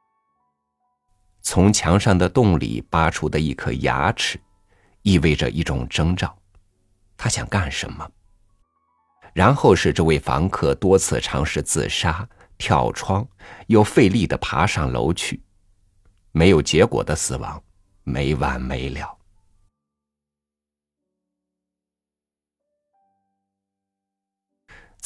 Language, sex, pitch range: Chinese, male, 80-100 Hz